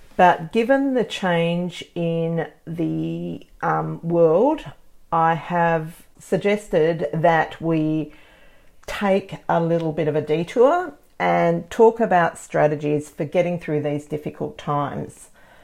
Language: English